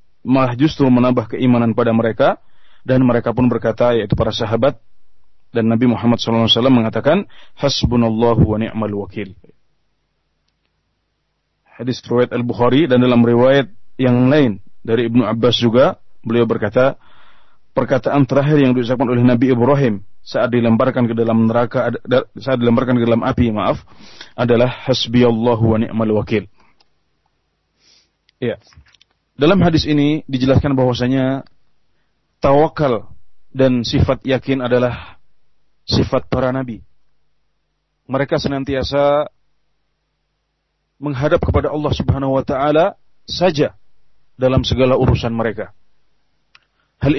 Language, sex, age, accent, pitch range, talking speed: Indonesian, male, 40-59, native, 115-135 Hz, 115 wpm